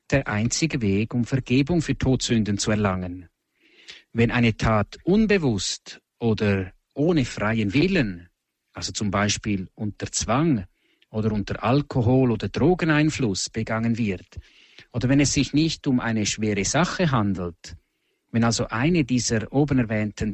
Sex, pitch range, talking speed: male, 100-130 Hz, 135 wpm